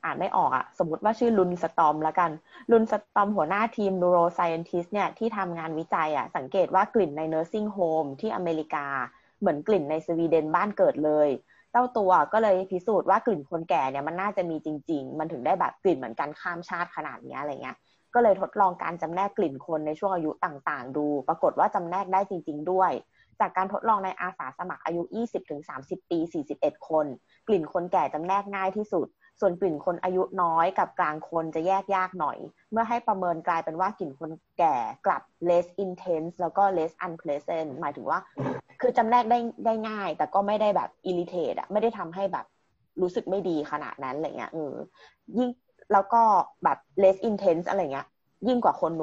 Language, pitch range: Thai, 160-200 Hz